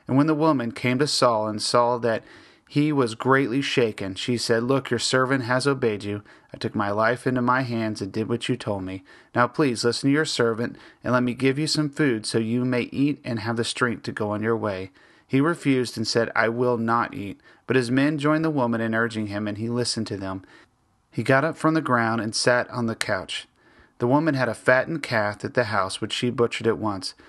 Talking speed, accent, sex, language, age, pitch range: 240 wpm, American, male, English, 30-49, 110-140 Hz